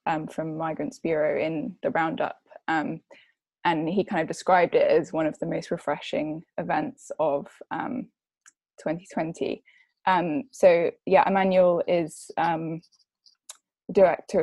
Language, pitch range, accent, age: English, 165-205 Hz, British, 10-29